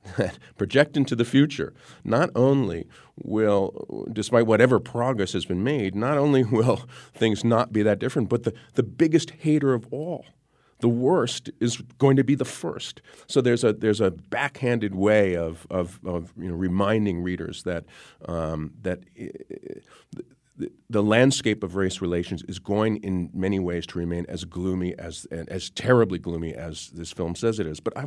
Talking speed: 180 wpm